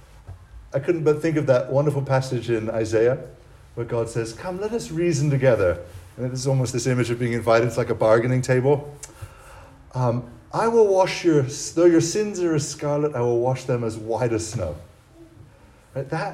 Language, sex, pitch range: English, male, 105-145 Hz